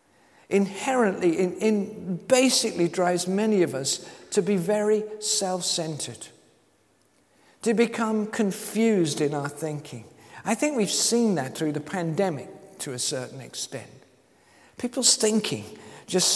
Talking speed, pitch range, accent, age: 120 wpm, 150-220 Hz, British, 50-69